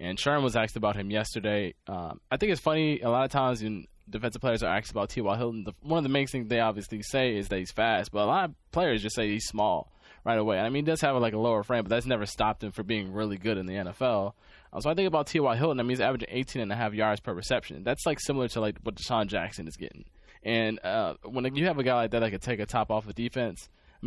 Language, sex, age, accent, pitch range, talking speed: English, male, 20-39, American, 110-140 Hz, 290 wpm